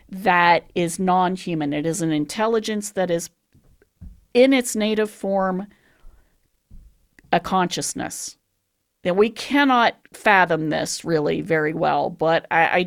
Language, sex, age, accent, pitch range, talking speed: English, female, 40-59, American, 170-230 Hz, 120 wpm